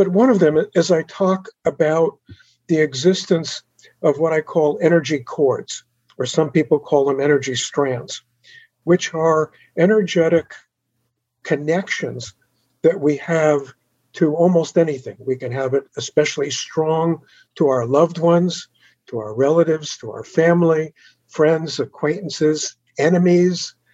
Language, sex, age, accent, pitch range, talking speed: English, male, 60-79, American, 135-170 Hz, 130 wpm